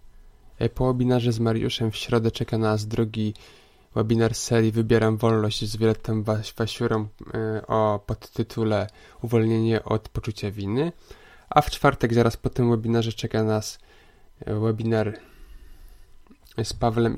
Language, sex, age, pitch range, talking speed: Polish, male, 20-39, 110-120 Hz, 120 wpm